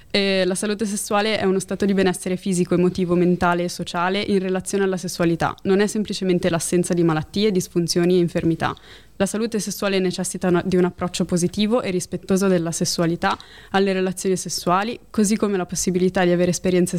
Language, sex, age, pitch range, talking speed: Italian, female, 20-39, 170-190 Hz, 175 wpm